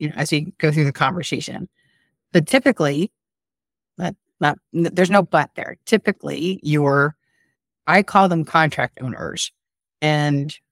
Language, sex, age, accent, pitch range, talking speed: English, female, 30-49, American, 155-195 Hz, 135 wpm